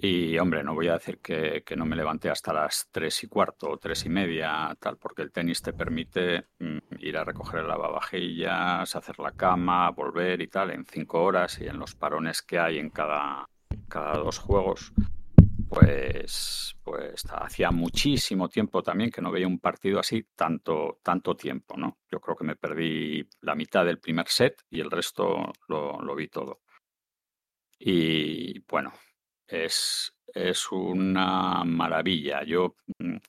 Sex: male